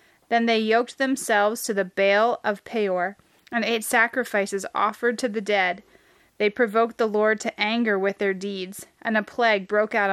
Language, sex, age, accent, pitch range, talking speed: English, female, 20-39, American, 205-235 Hz, 180 wpm